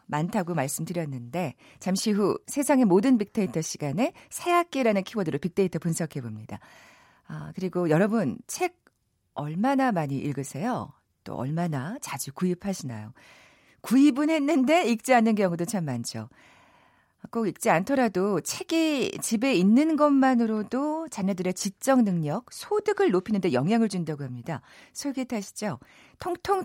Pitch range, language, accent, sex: 155-245 Hz, Korean, native, female